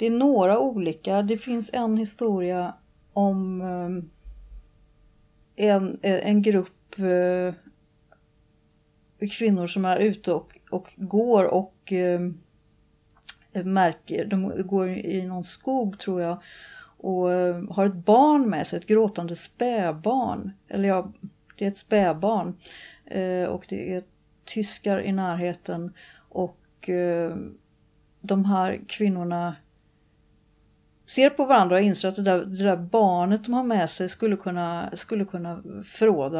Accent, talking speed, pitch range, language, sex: native, 120 wpm, 180-210 Hz, Swedish, female